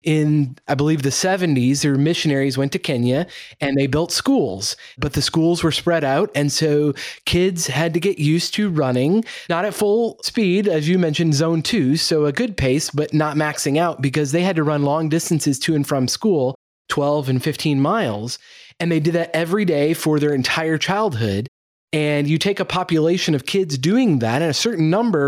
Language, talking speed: English, 200 wpm